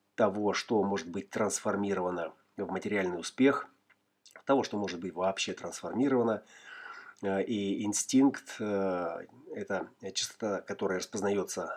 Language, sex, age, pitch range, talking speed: Russian, male, 30-49, 95-125 Hz, 100 wpm